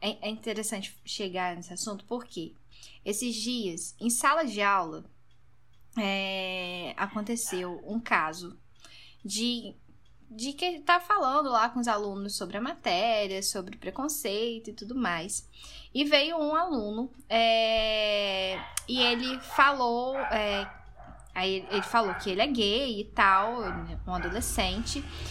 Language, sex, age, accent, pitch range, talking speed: Portuguese, female, 10-29, Brazilian, 200-270 Hz, 130 wpm